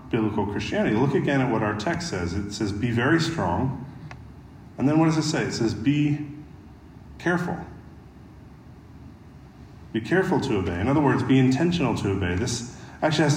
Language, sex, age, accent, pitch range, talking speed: English, male, 40-59, American, 105-135 Hz, 170 wpm